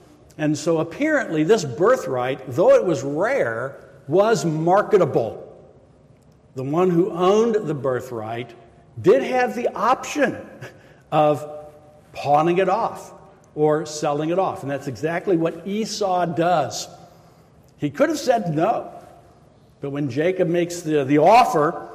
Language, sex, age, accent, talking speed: English, male, 60-79, American, 130 wpm